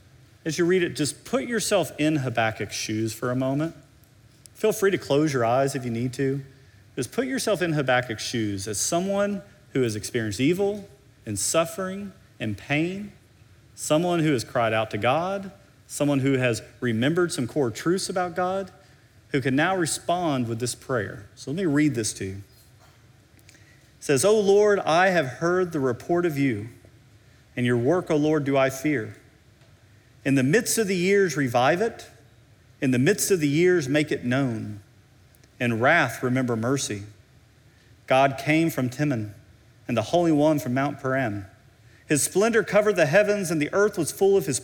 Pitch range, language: 115-170 Hz, English